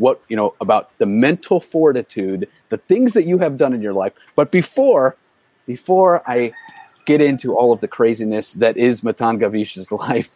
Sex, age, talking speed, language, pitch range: male, 30-49, 180 wpm, English, 105-155 Hz